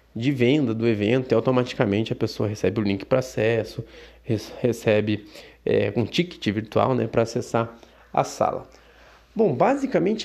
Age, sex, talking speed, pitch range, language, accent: 20-39, male, 140 wpm, 110-150 Hz, Portuguese, Brazilian